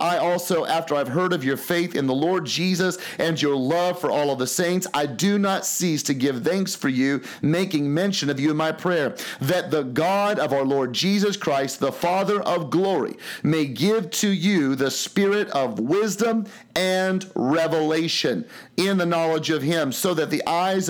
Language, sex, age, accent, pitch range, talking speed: English, male, 40-59, American, 135-175 Hz, 190 wpm